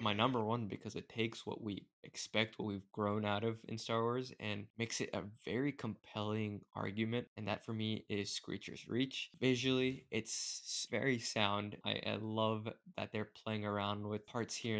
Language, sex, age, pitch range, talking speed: English, male, 20-39, 105-115 Hz, 185 wpm